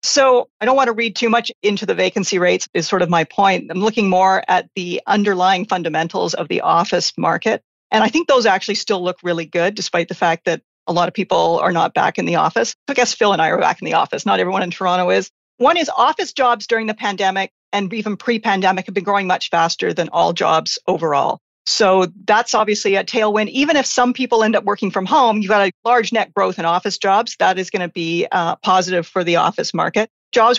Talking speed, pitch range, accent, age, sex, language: 235 wpm, 180-220 Hz, American, 50-69, female, English